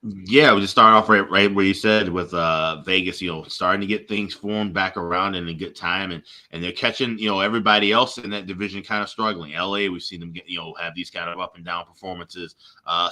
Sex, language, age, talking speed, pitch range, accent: male, English, 20-39, 255 wpm, 90-110 Hz, American